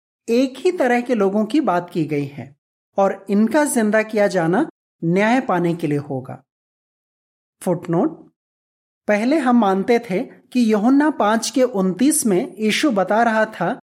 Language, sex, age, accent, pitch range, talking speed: Hindi, male, 30-49, native, 175-245 Hz, 150 wpm